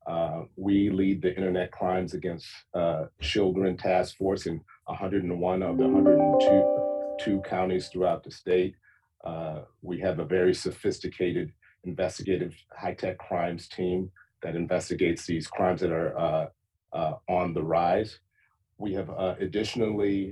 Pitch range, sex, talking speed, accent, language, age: 85-95 Hz, male, 135 wpm, American, English, 40-59